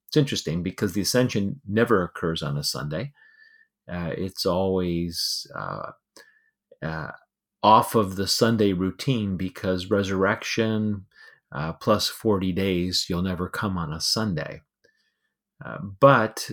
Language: English